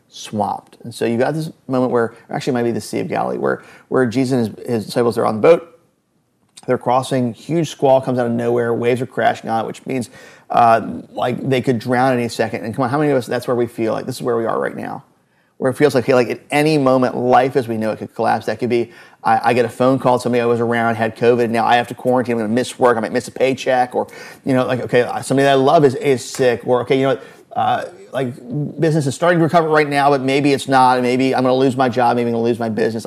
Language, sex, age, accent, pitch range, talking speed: English, male, 30-49, American, 125-170 Hz, 290 wpm